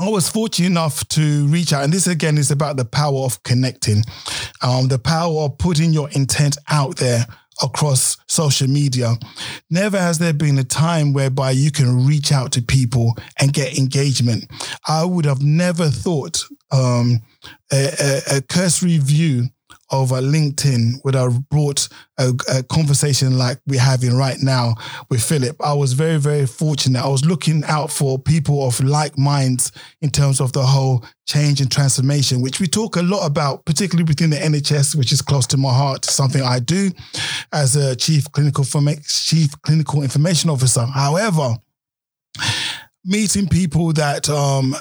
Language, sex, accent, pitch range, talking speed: English, male, British, 130-155 Hz, 165 wpm